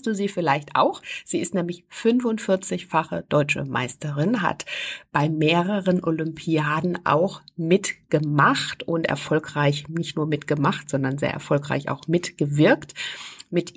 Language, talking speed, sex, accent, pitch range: German, 120 wpm, female, German, 155-200 Hz